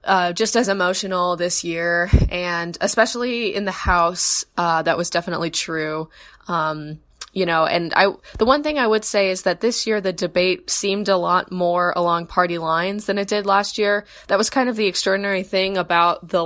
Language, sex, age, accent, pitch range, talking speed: English, female, 20-39, American, 170-200 Hz, 195 wpm